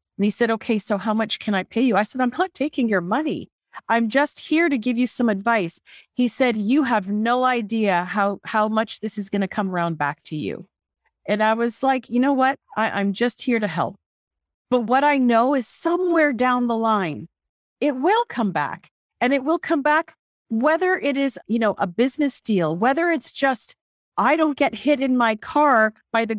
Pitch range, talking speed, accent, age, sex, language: 215-285 Hz, 215 wpm, American, 40-59, female, English